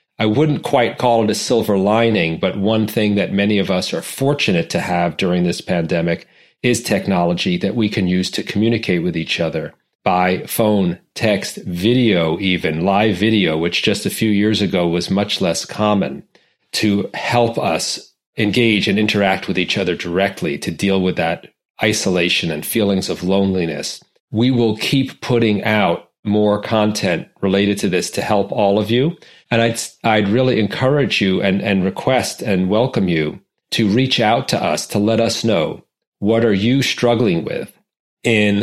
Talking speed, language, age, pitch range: 170 wpm, English, 40-59, 95-110 Hz